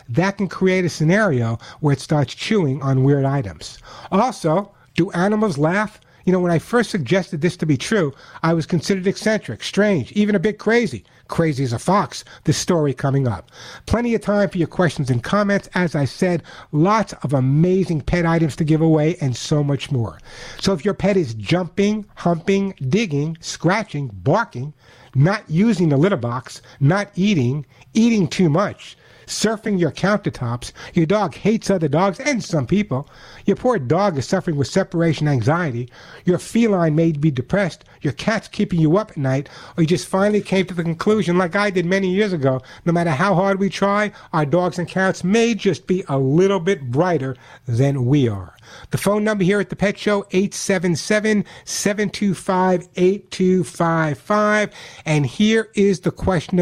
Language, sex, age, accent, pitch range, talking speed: English, male, 60-79, American, 145-200 Hz, 175 wpm